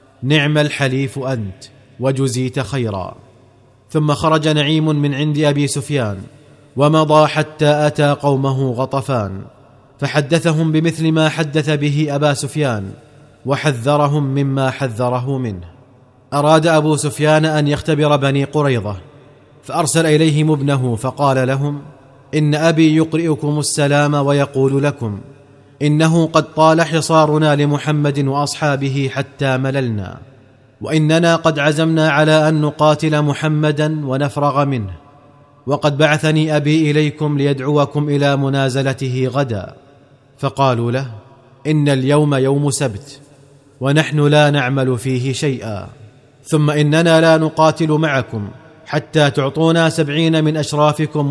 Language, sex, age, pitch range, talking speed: Arabic, male, 30-49, 135-150 Hz, 110 wpm